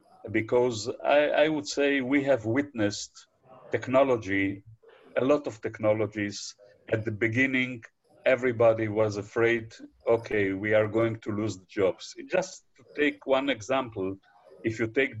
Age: 50-69